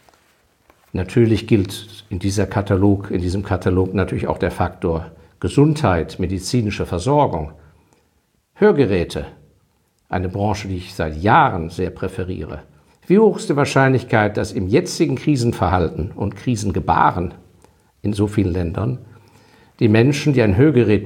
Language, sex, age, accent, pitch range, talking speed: German, male, 50-69, German, 90-120 Hz, 125 wpm